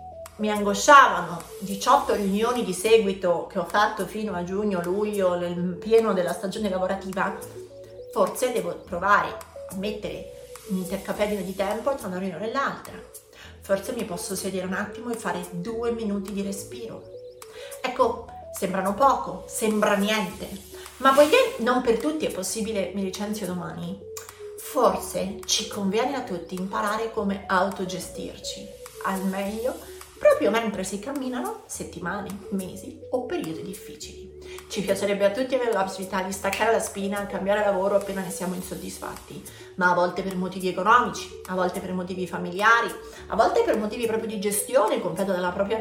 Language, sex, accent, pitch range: Italian, female, native, 190-245 Hz